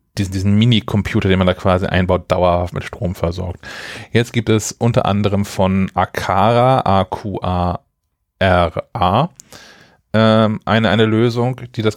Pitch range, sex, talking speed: 100-120 Hz, male, 140 wpm